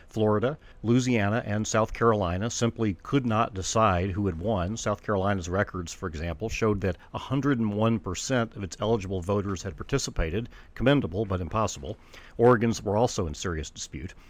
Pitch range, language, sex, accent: 90-115 Hz, English, male, American